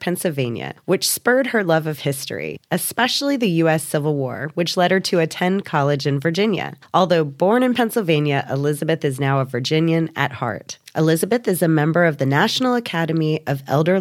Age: 20-39